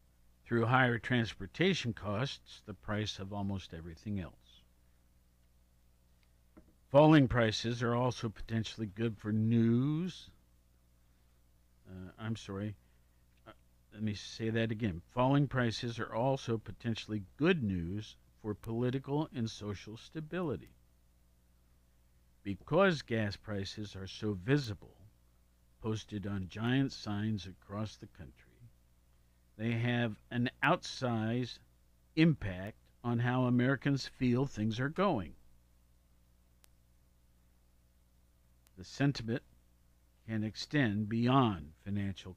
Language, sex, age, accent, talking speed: English, male, 50-69, American, 100 wpm